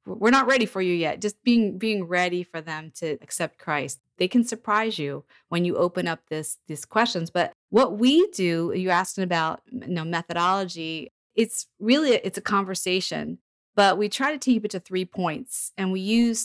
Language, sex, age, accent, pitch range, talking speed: English, female, 30-49, American, 165-195 Hz, 185 wpm